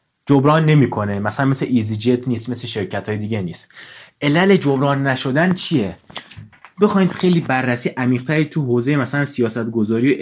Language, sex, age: Persian, male, 30-49